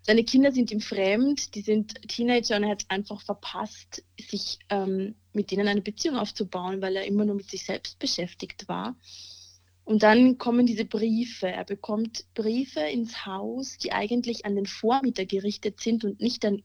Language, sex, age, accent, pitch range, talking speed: German, female, 30-49, German, 200-245 Hz, 175 wpm